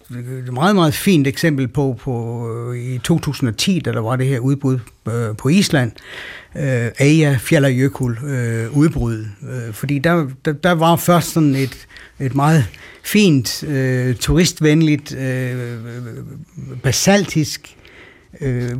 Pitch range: 130-165 Hz